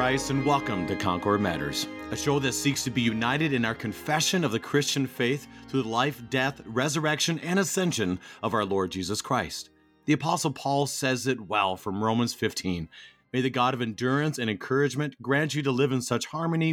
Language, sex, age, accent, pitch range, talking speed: English, male, 40-59, American, 110-145 Hz, 195 wpm